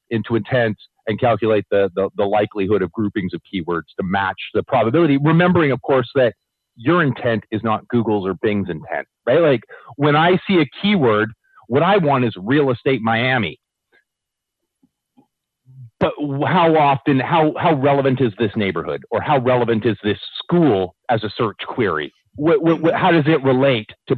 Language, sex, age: English, male, 40-59